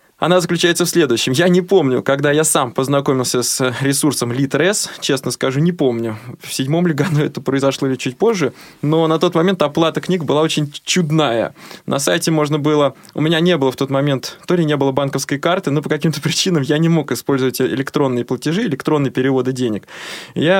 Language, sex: Russian, male